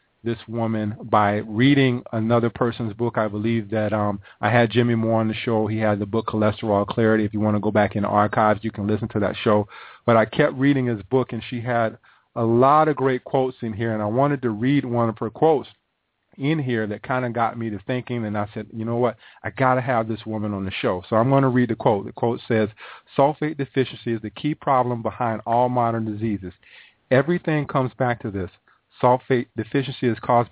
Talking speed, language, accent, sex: 230 wpm, English, American, male